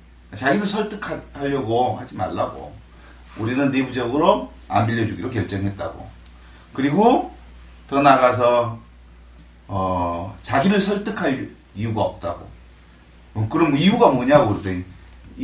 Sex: male